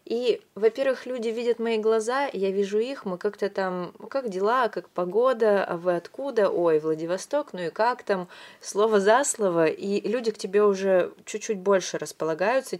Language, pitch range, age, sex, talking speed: Russian, 170-215 Hz, 20-39, female, 175 wpm